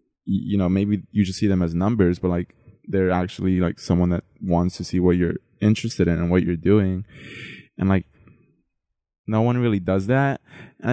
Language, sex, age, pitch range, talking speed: English, male, 20-39, 90-110 Hz, 190 wpm